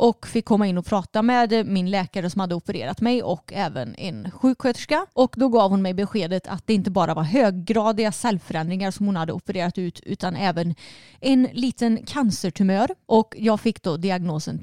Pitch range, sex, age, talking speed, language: 185-230 Hz, female, 30-49, 185 wpm, Swedish